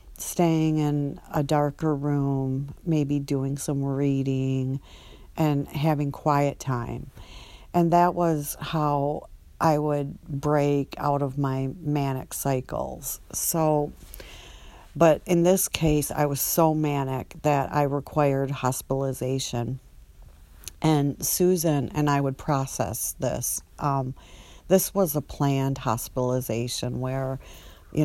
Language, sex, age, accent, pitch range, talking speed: English, female, 50-69, American, 130-150 Hz, 115 wpm